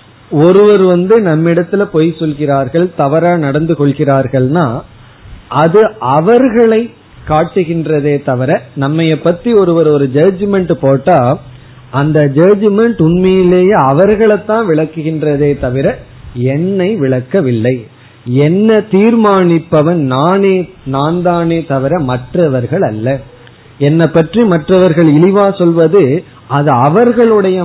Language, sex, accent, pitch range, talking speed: Tamil, male, native, 135-180 Hz, 85 wpm